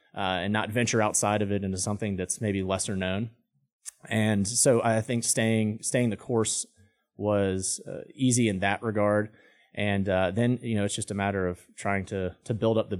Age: 30-49